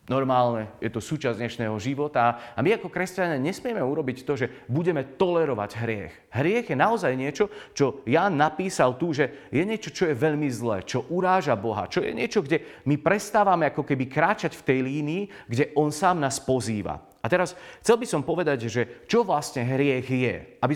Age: 40-59